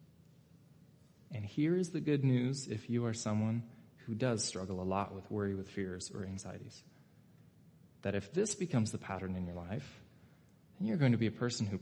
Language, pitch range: English, 110-140 Hz